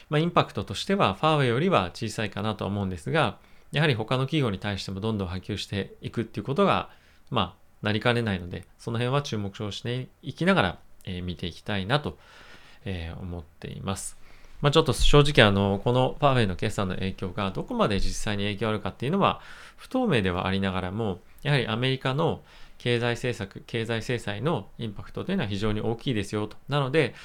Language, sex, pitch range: Japanese, male, 95-135 Hz